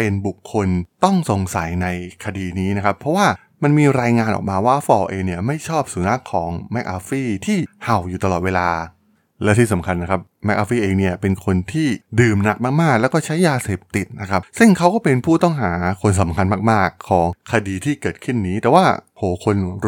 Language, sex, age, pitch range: Thai, male, 20-39, 95-125 Hz